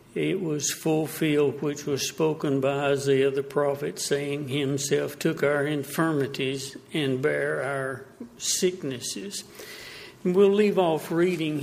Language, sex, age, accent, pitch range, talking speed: English, male, 60-79, American, 140-185 Hz, 125 wpm